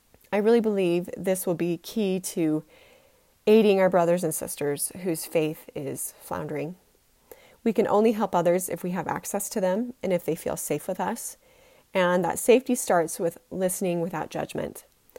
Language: English